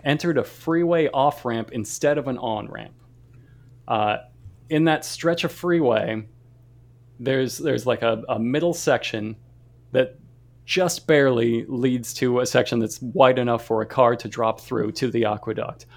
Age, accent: 30-49, American